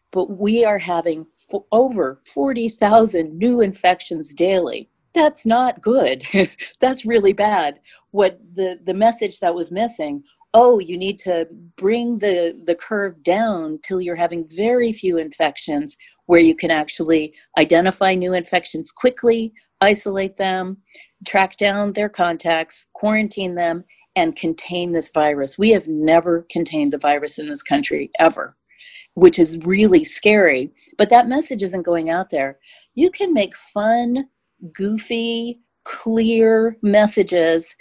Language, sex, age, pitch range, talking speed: English, female, 40-59, 170-225 Hz, 135 wpm